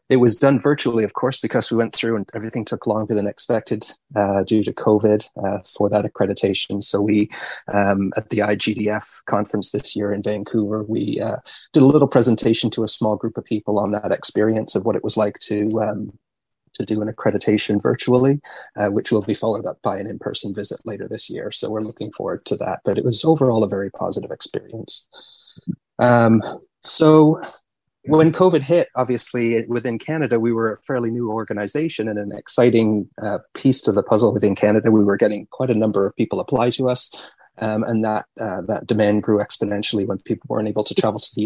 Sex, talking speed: male, 205 wpm